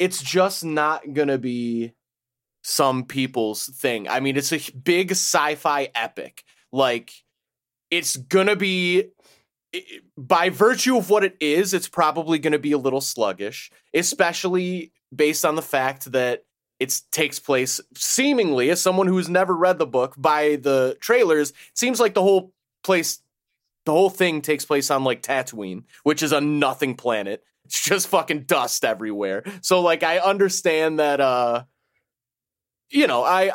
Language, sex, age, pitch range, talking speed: English, male, 30-49, 130-185 Hz, 155 wpm